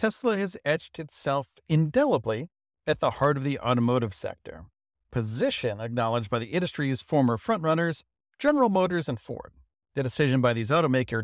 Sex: male